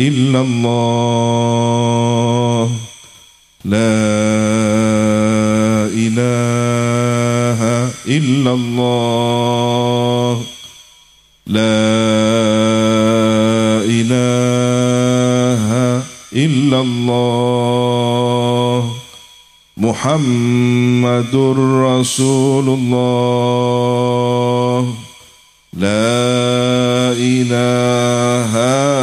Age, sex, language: 50-69, male, Indonesian